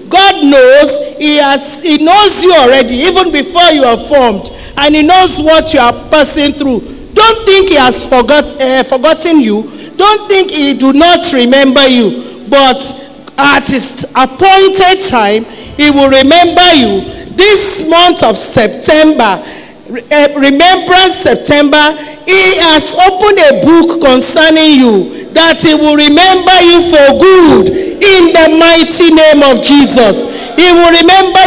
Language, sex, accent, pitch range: English, male, Nigerian, 285-360 Hz